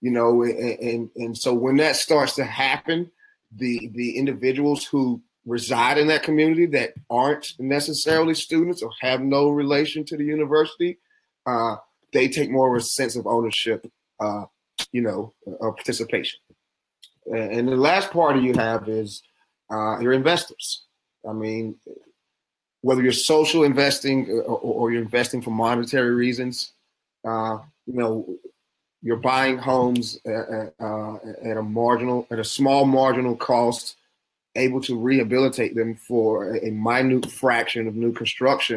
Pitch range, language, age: 115-140 Hz, English, 30-49